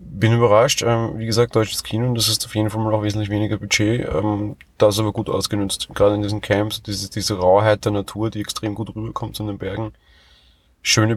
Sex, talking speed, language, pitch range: male, 200 wpm, German, 100-115 Hz